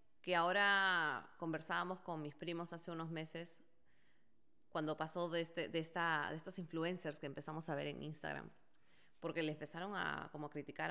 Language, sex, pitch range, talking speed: English, female, 150-180 Hz, 150 wpm